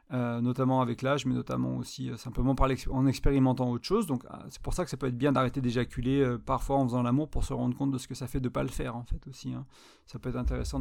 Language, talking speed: French, 295 wpm